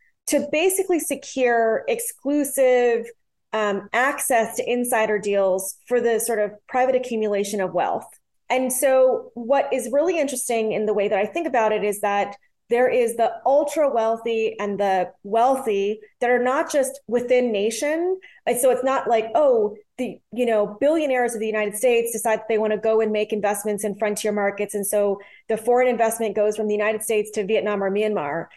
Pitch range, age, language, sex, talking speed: 210-265 Hz, 20-39, English, female, 180 wpm